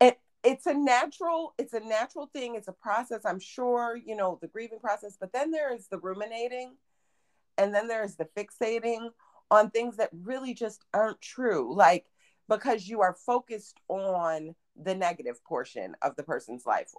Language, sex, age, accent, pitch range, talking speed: English, female, 40-59, American, 185-265 Hz, 175 wpm